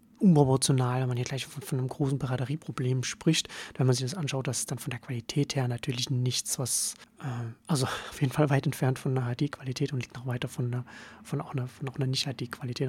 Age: 30-49